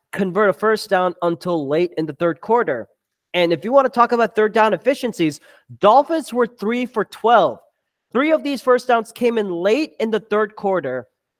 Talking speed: 195 wpm